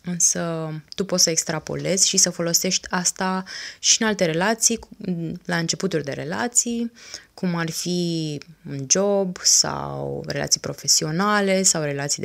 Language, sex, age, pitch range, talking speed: Romanian, female, 20-39, 155-200 Hz, 130 wpm